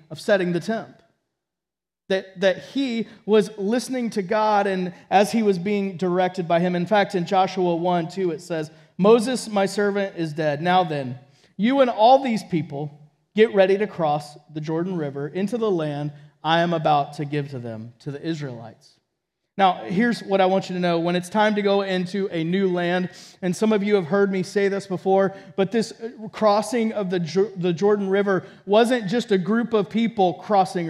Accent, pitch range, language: American, 175-225 Hz, English